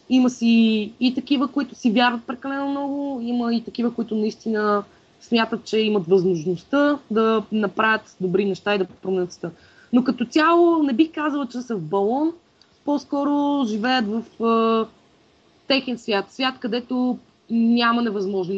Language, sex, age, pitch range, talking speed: Bulgarian, female, 20-39, 205-240 Hz, 145 wpm